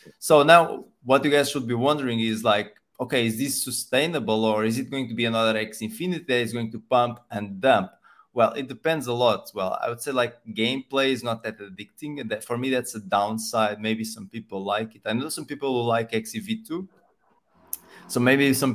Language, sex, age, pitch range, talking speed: English, male, 20-39, 110-135 Hz, 215 wpm